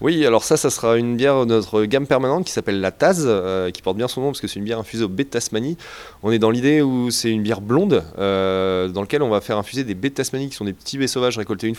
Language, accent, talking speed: French, French, 295 wpm